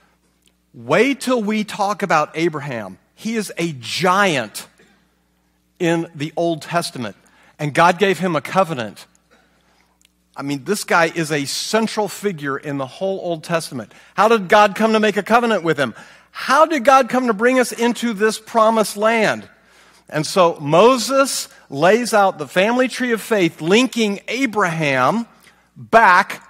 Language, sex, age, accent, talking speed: English, male, 50-69, American, 150 wpm